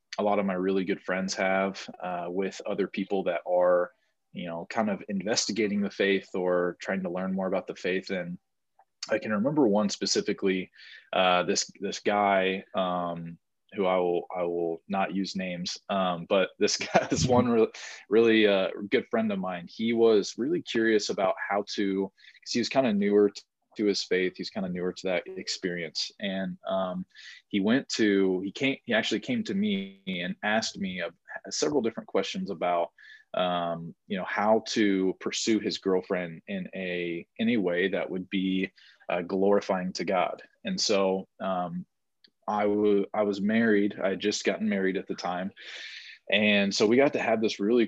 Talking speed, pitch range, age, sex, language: 185 wpm, 90-110 Hz, 20-39, male, English